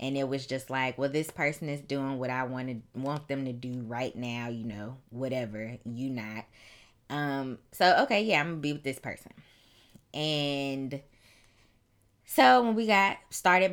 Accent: American